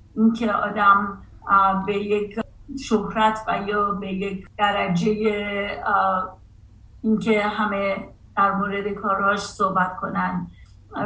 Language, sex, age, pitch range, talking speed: Persian, female, 40-59, 195-225 Hz, 105 wpm